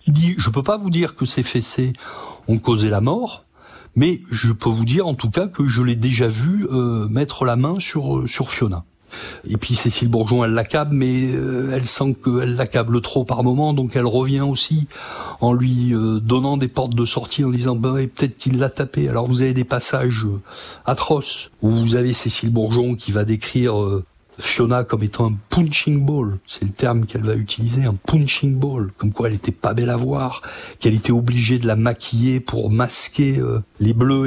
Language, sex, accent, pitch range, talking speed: French, male, French, 115-130 Hz, 210 wpm